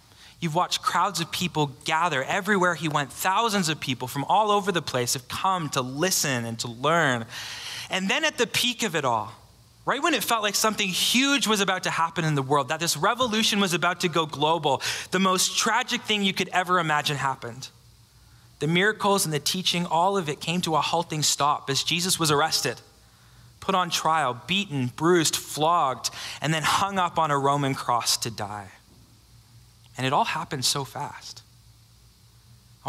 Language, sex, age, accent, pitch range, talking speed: English, male, 20-39, American, 125-180 Hz, 190 wpm